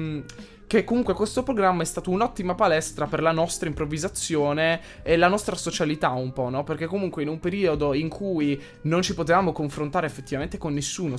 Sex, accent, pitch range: male, native, 145-180 Hz